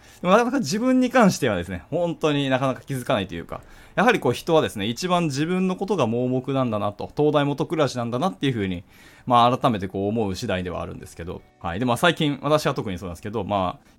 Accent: native